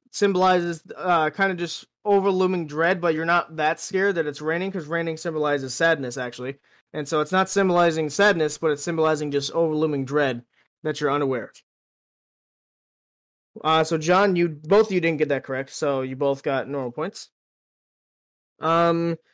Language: English